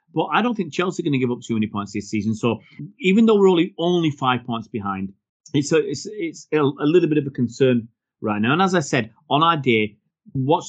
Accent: British